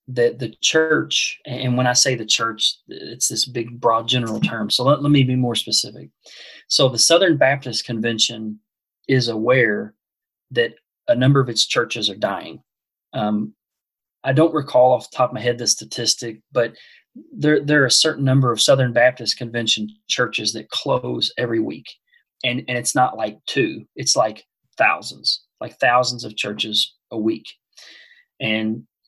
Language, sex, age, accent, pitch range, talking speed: English, male, 30-49, American, 110-135 Hz, 165 wpm